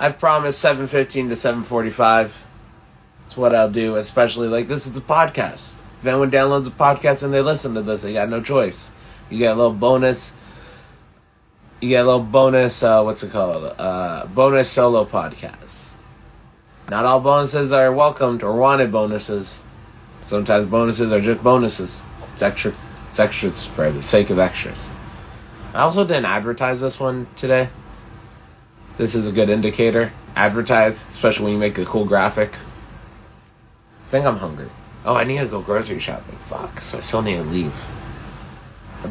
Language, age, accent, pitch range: English, 30-49, American, 110-130 Hz